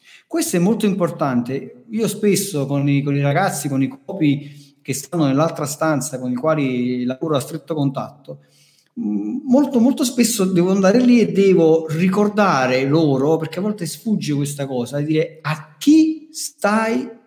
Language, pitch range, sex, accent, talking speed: Italian, 140-210 Hz, male, native, 160 wpm